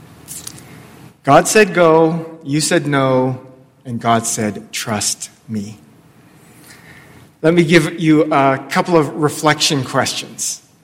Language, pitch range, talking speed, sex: English, 140-165 Hz, 110 wpm, male